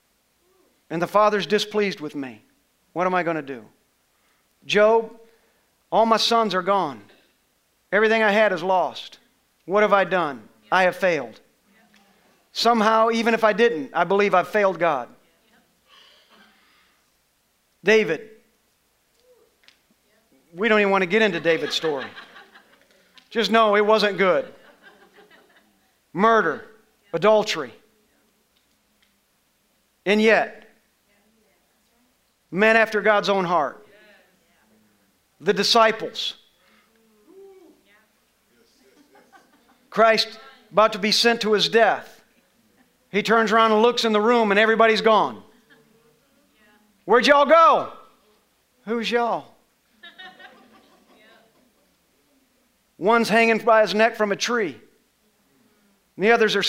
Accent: American